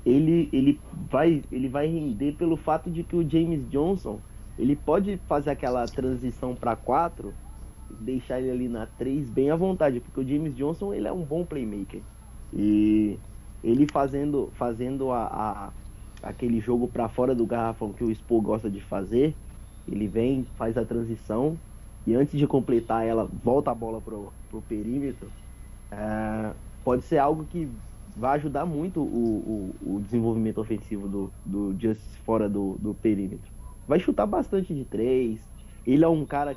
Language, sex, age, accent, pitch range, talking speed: Portuguese, male, 20-39, Brazilian, 105-140 Hz, 165 wpm